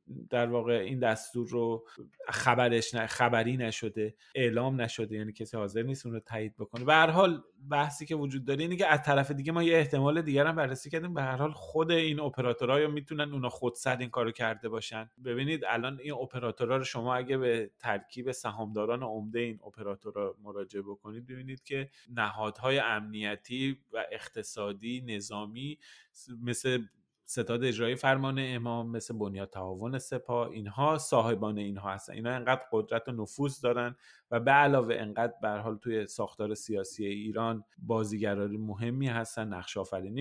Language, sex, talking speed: Persian, male, 160 wpm